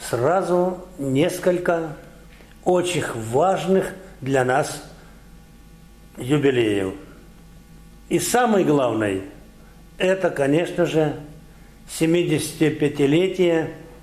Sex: male